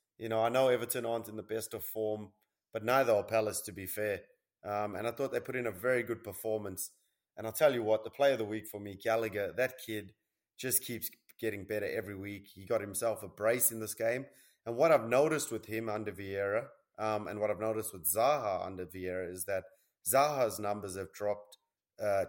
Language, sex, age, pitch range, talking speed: English, male, 30-49, 100-115 Hz, 220 wpm